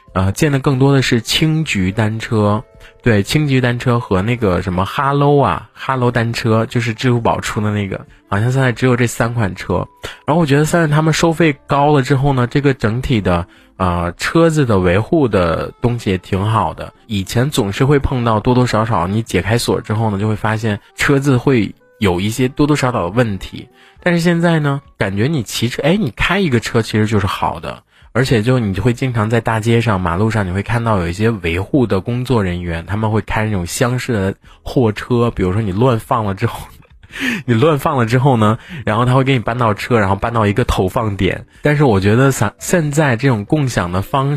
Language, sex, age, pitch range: Chinese, male, 20-39, 100-135 Hz